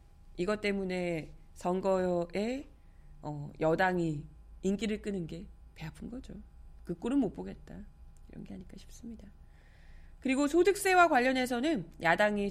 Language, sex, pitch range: Korean, female, 180-245 Hz